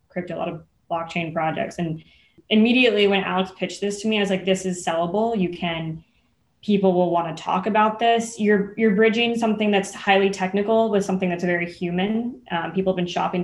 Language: English